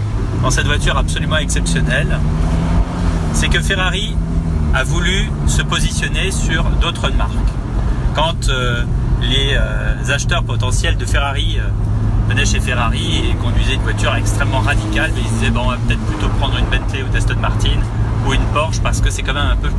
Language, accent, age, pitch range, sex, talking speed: French, French, 30-49, 85-110 Hz, male, 165 wpm